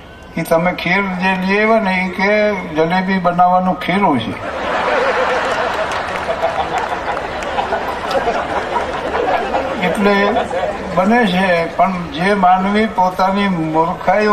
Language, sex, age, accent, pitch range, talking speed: Gujarati, male, 60-79, native, 155-195 Hz, 90 wpm